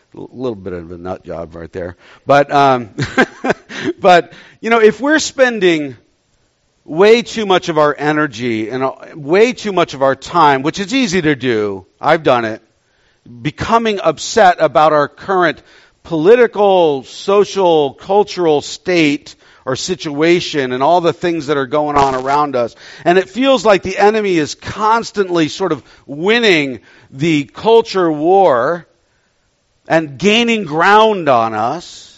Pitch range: 140-205 Hz